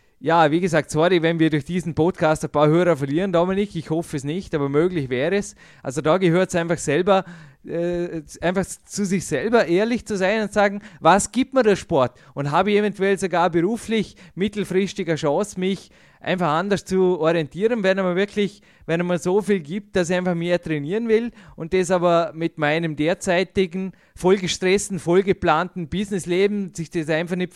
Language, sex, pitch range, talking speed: German, male, 155-190 Hz, 185 wpm